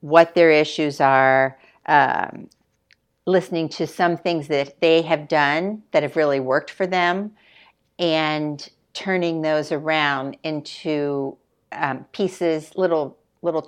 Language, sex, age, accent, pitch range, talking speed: English, female, 50-69, American, 145-170 Hz, 125 wpm